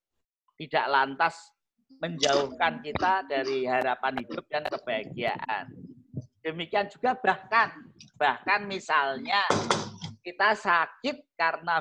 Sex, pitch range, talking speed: male, 160-245 Hz, 85 wpm